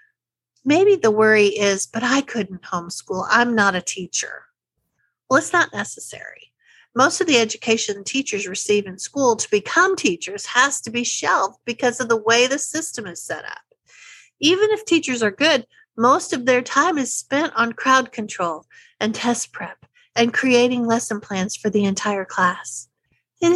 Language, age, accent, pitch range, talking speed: English, 50-69, American, 205-290 Hz, 170 wpm